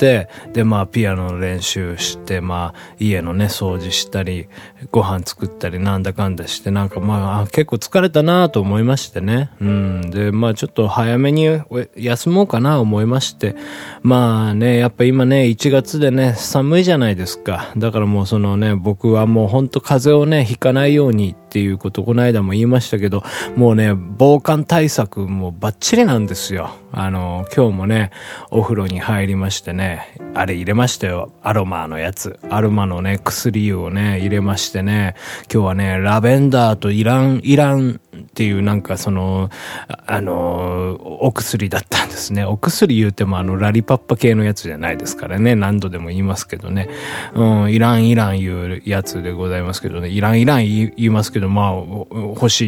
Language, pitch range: Japanese, 95-120 Hz